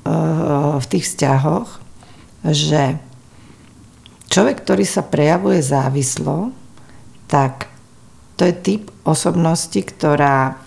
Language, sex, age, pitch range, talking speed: Slovak, female, 50-69, 140-170 Hz, 85 wpm